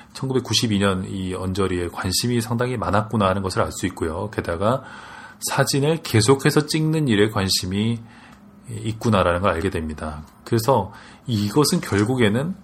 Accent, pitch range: native, 95-125 Hz